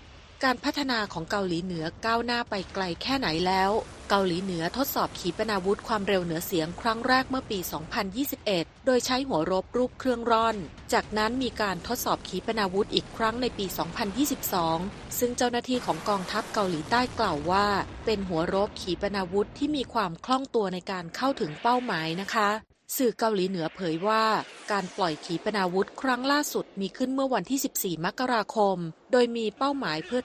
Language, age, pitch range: Thai, 30-49, 185-235 Hz